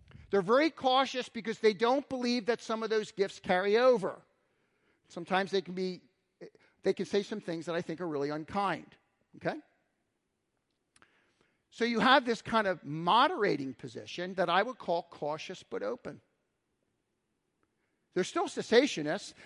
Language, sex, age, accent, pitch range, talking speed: English, male, 50-69, American, 175-235 Hz, 150 wpm